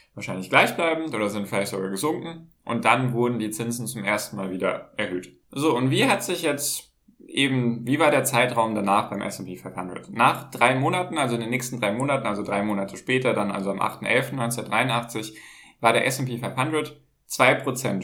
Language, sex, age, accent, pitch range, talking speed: German, male, 10-29, German, 110-140 Hz, 175 wpm